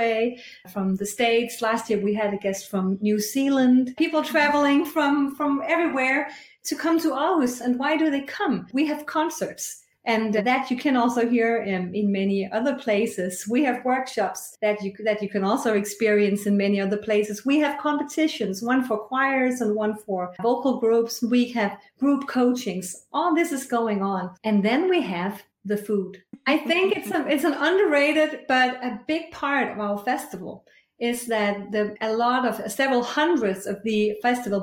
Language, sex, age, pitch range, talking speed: English, female, 40-59, 210-275 Hz, 180 wpm